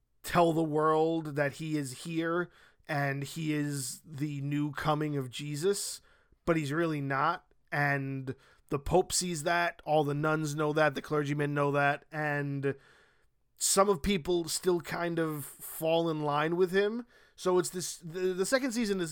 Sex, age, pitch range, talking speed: male, 20-39, 145-170 Hz, 165 wpm